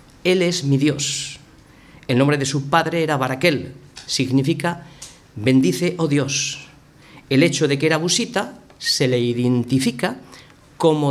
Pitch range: 135-180 Hz